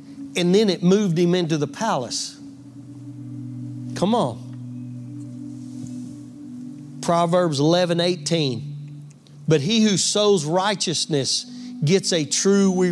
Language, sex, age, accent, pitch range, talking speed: English, male, 40-59, American, 140-220 Hz, 100 wpm